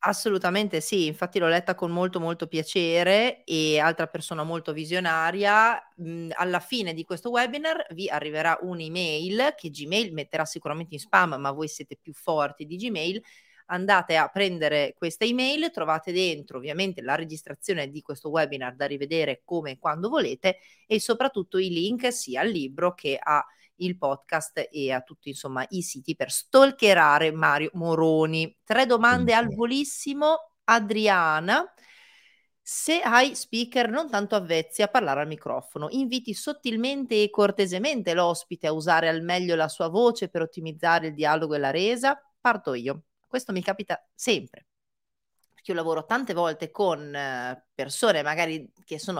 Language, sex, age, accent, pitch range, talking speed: Italian, female, 30-49, native, 155-220 Hz, 150 wpm